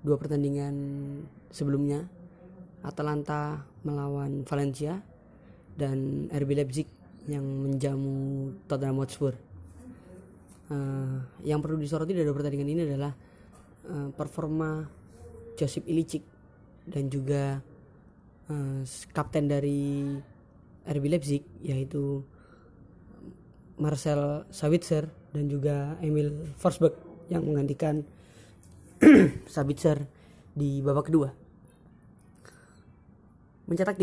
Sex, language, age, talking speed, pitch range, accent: female, Indonesian, 20-39, 80 wpm, 135-155 Hz, native